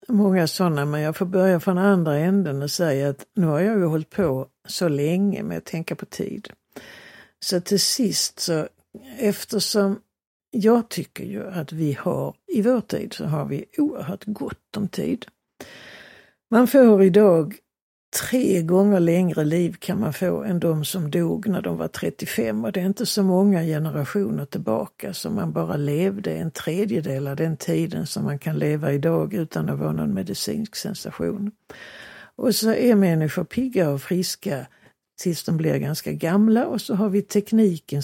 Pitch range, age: 160-205 Hz, 60-79